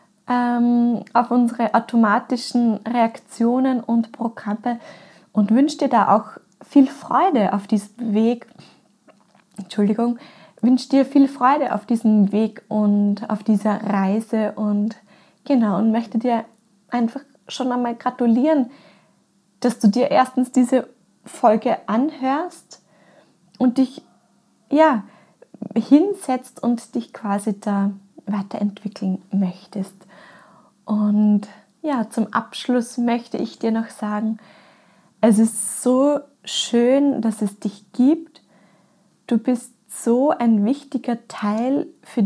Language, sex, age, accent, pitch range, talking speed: German, female, 20-39, German, 210-250 Hz, 110 wpm